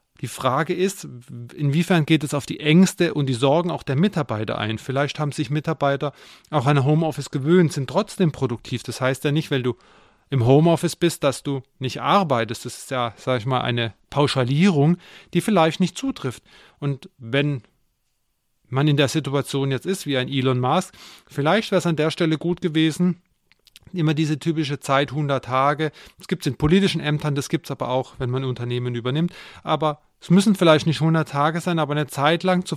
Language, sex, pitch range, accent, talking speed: German, male, 130-170 Hz, German, 195 wpm